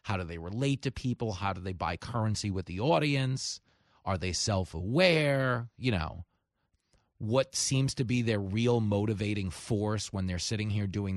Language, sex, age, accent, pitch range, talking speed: English, male, 30-49, American, 100-135 Hz, 170 wpm